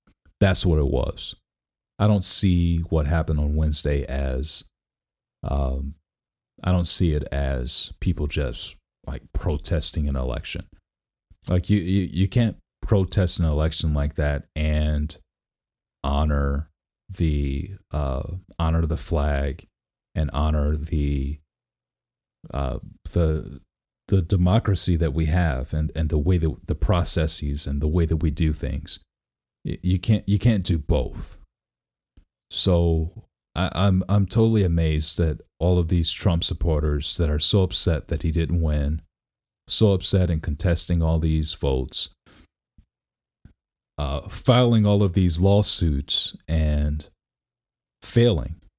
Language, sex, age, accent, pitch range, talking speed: English, male, 30-49, American, 75-90 Hz, 130 wpm